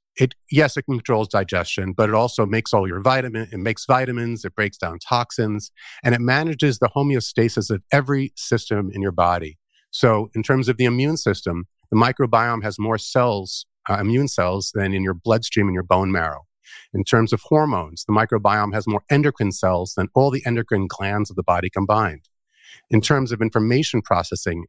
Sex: male